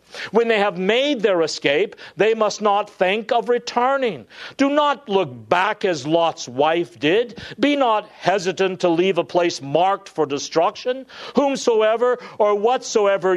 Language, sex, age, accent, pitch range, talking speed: English, male, 50-69, American, 170-235 Hz, 150 wpm